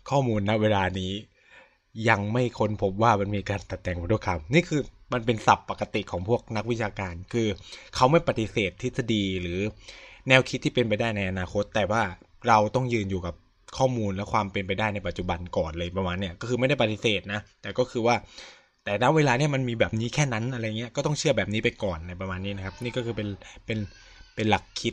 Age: 20-39